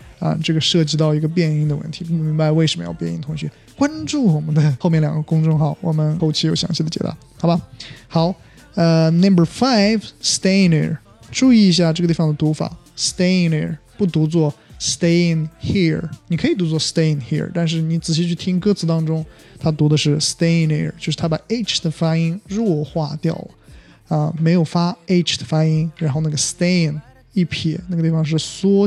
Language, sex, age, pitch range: Chinese, male, 20-39, 155-170 Hz